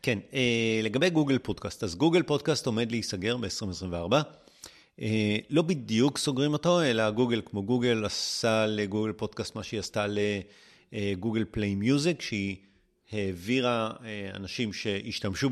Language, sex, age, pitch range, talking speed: Hebrew, male, 30-49, 105-150 Hz, 120 wpm